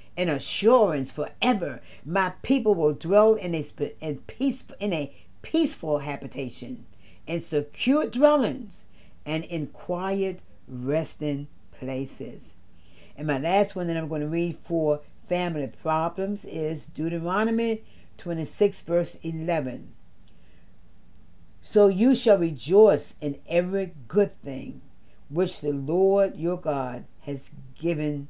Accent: American